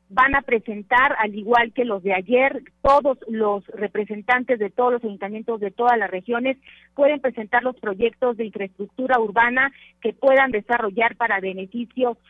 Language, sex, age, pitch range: Spanish, female, 40-59, 215-255 Hz